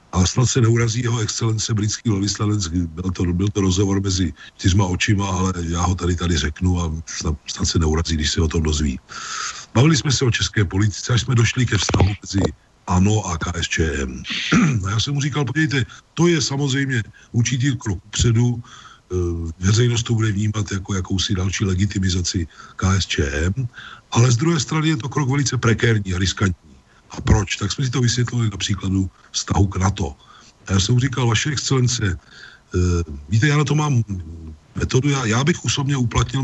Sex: male